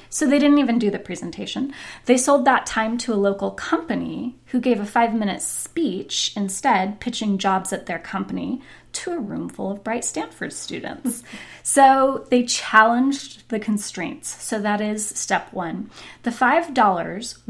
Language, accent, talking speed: English, American, 160 wpm